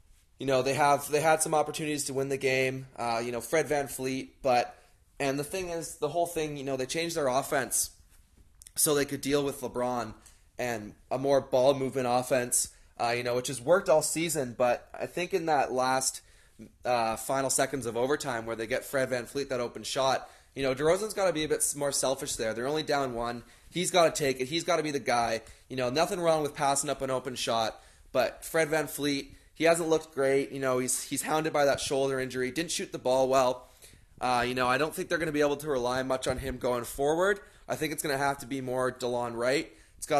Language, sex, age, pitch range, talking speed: English, male, 20-39, 120-150 Hz, 240 wpm